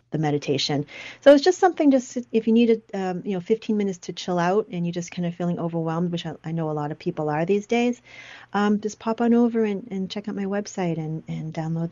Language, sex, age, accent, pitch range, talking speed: English, female, 40-59, American, 165-205 Hz, 245 wpm